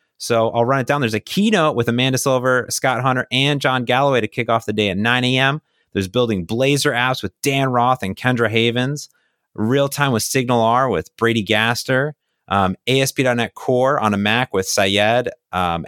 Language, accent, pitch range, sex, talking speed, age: English, American, 105-145 Hz, male, 190 wpm, 30-49